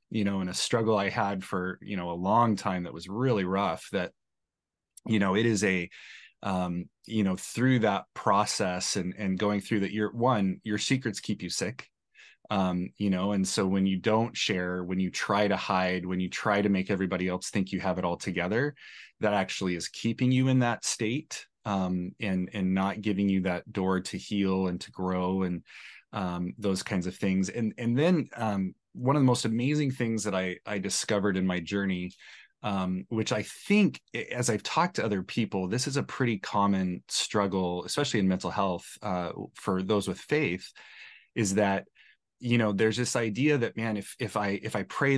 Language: English